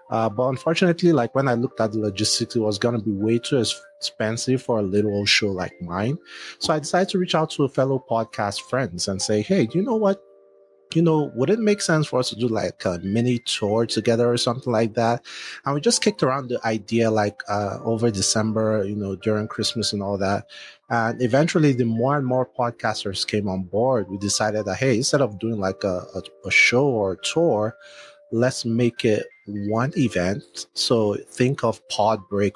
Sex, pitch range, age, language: male, 105-130 Hz, 30-49, Swahili